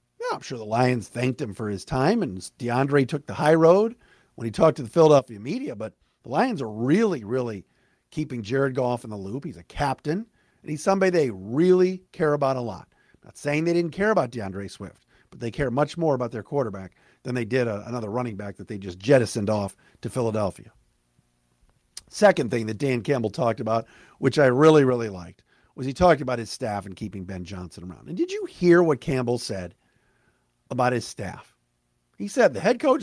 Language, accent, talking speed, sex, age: English, American, 205 wpm, male, 50-69